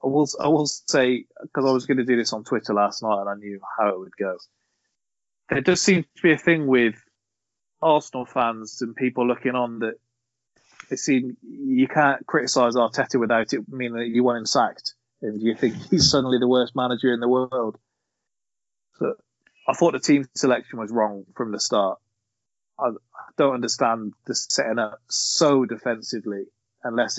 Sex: male